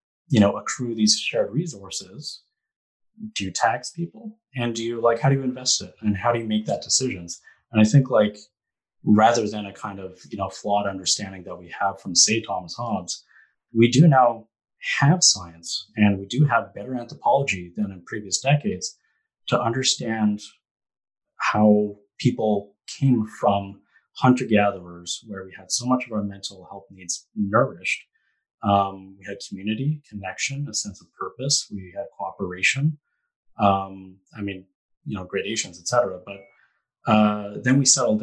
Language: English